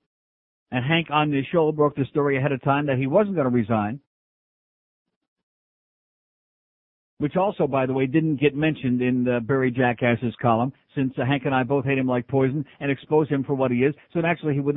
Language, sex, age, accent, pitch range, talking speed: English, male, 50-69, American, 140-190 Hz, 205 wpm